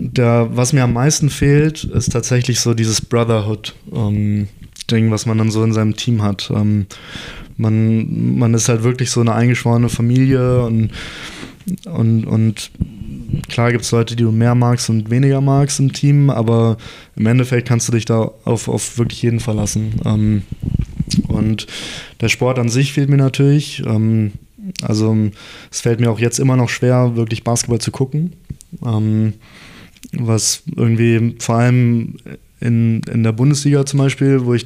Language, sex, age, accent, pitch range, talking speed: German, male, 20-39, German, 115-135 Hz, 165 wpm